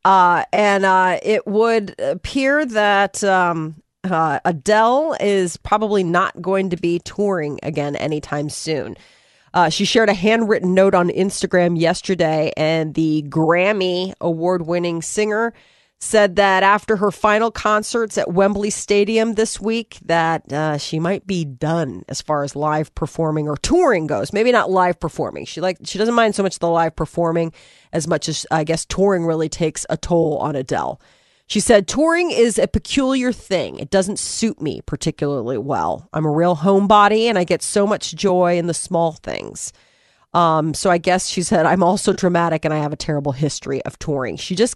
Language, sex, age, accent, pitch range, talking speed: English, female, 30-49, American, 160-200 Hz, 175 wpm